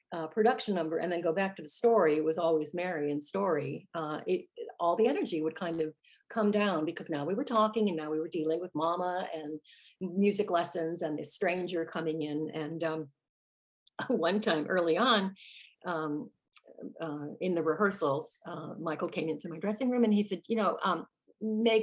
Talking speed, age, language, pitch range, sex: 200 wpm, 50-69, English, 160-215 Hz, female